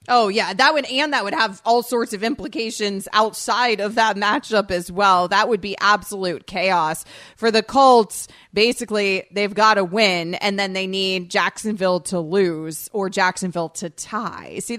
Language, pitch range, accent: English, 175-215 Hz, American